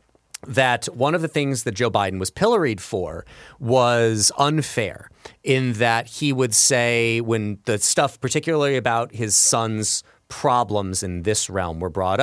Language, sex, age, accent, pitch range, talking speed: English, male, 30-49, American, 100-135 Hz, 150 wpm